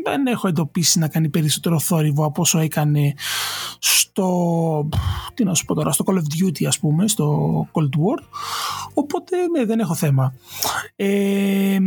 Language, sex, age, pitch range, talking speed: Greek, male, 20-39, 160-210 Hz, 135 wpm